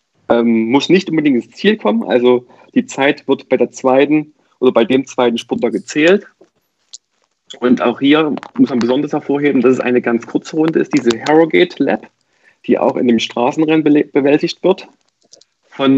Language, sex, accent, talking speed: German, male, German, 165 wpm